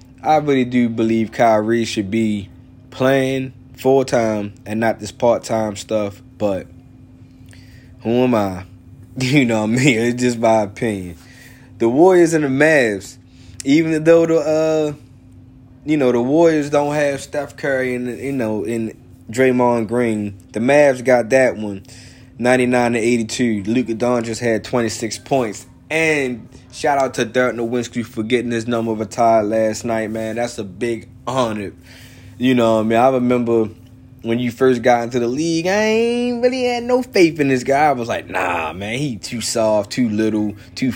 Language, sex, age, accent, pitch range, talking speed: English, male, 20-39, American, 110-130 Hz, 175 wpm